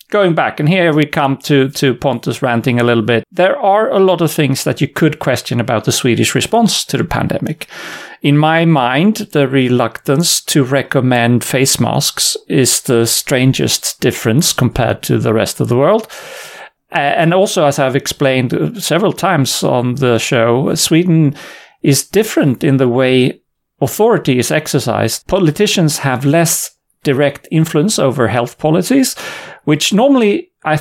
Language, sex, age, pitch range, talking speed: English, male, 40-59, 125-165 Hz, 155 wpm